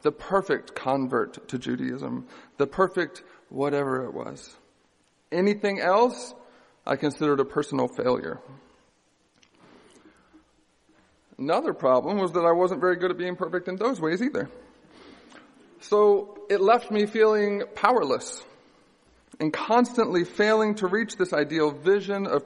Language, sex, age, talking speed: English, male, 40-59, 125 wpm